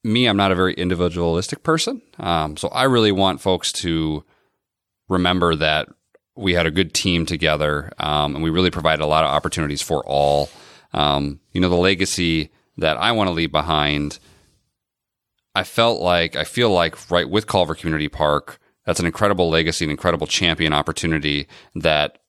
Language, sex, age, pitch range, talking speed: English, male, 30-49, 80-95 Hz, 170 wpm